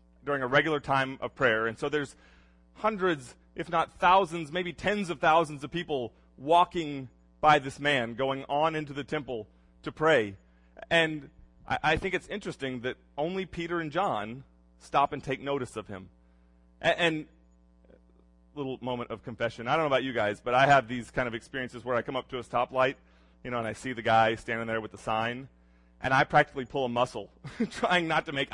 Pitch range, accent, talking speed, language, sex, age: 95-160 Hz, American, 200 wpm, English, male, 30-49